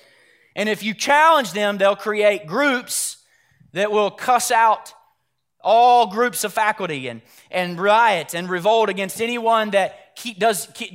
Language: English